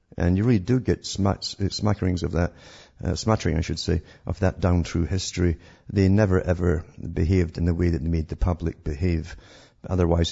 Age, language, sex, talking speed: 50-69, English, male, 190 wpm